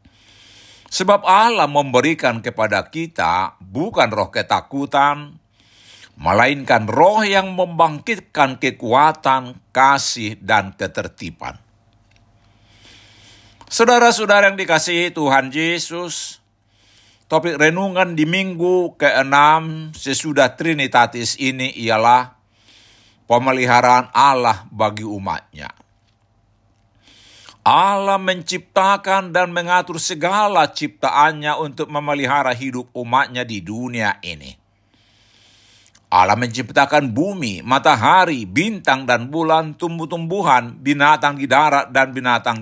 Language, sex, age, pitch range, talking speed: Indonesian, male, 60-79, 110-155 Hz, 85 wpm